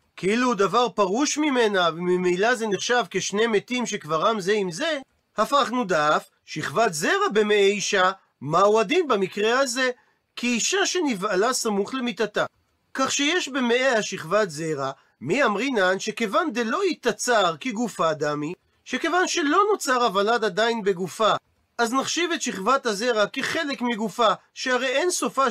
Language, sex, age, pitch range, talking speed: Hebrew, male, 40-59, 195-260 Hz, 130 wpm